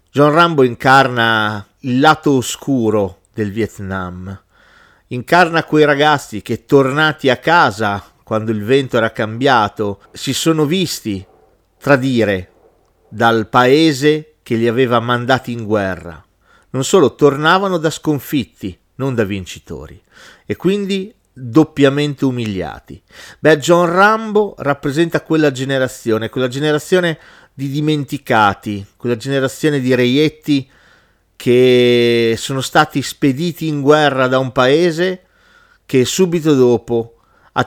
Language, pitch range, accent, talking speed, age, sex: Italian, 110-150 Hz, native, 115 wpm, 40-59, male